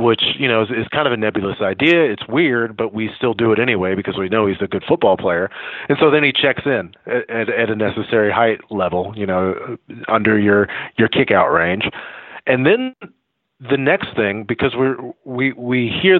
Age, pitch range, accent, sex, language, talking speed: 30-49, 110-145 Hz, American, male, English, 210 wpm